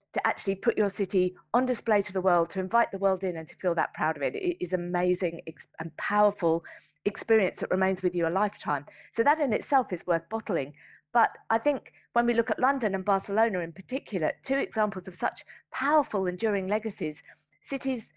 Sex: female